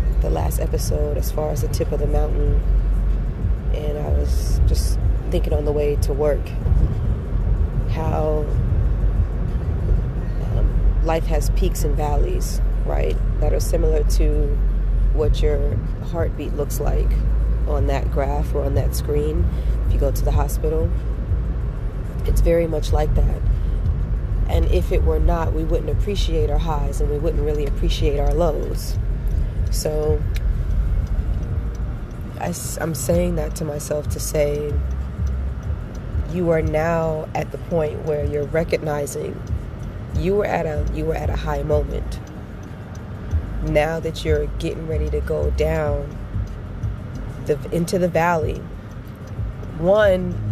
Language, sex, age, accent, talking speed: English, female, 30-49, American, 135 wpm